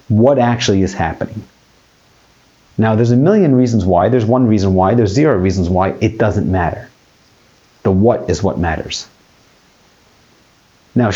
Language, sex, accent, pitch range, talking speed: English, male, American, 95-125 Hz, 145 wpm